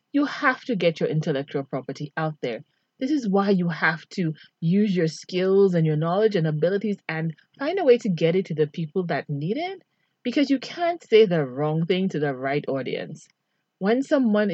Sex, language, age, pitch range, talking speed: female, English, 30-49, 160-230 Hz, 200 wpm